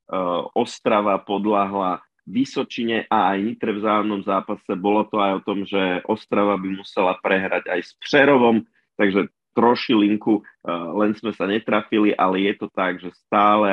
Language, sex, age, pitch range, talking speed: Slovak, male, 30-49, 95-105 Hz, 155 wpm